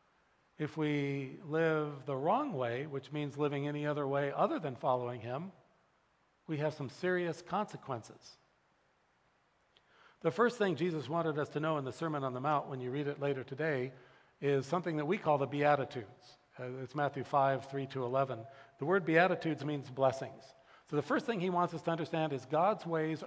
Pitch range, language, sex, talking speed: 135-170 Hz, English, male, 185 wpm